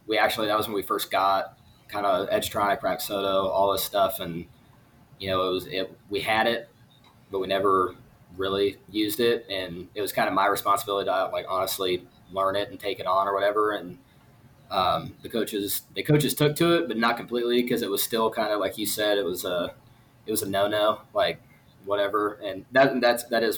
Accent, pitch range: American, 100-120 Hz